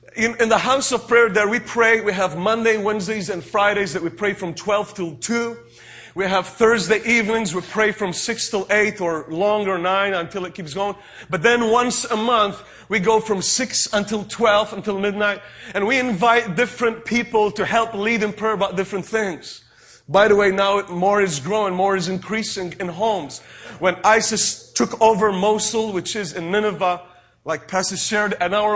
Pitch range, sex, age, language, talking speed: 200-235 Hz, male, 30-49, English, 190 wpm